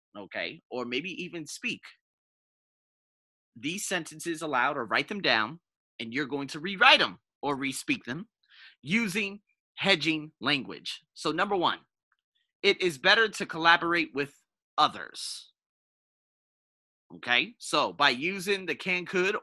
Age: 30-49